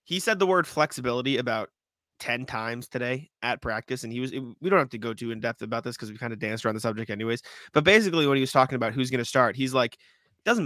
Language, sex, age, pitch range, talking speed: English, male, 20-39, 120-150 Hz, 265 wpm